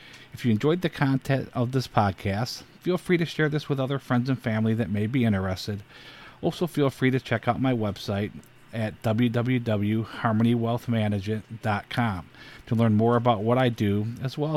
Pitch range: 105-125 Hz